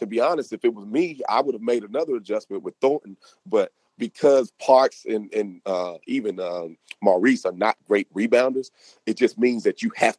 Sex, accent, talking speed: male, American, 200 wpm